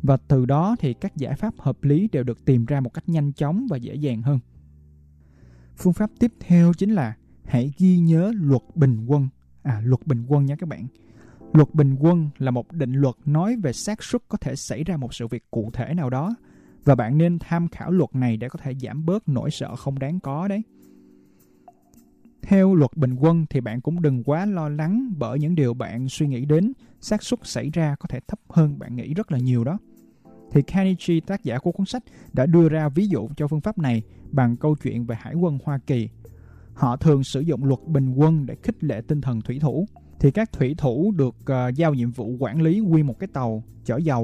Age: 20-39